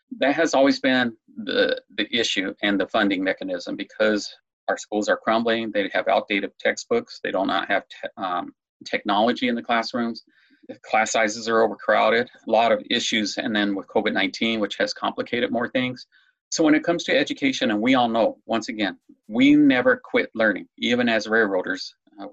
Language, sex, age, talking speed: English, male, 30-49, 175 wpm